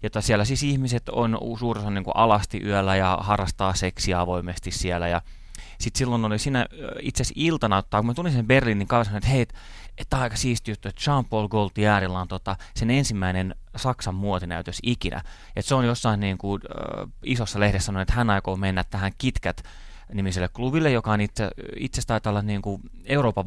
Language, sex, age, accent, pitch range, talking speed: Finnish, male, 30-49, native, 95-120 Hz, 175 wpm